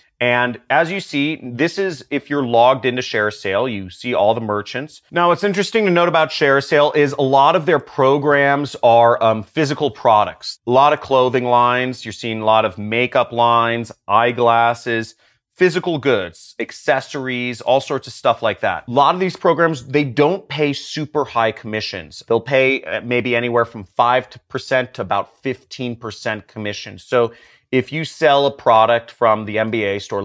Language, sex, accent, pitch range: English, male, American, 105-135 Hz